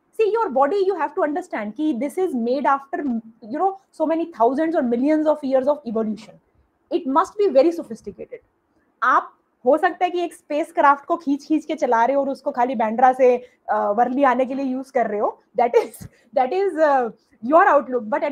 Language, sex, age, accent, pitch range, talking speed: Hindi, female, 20-39, native, 255-360 Hz, 215 wpm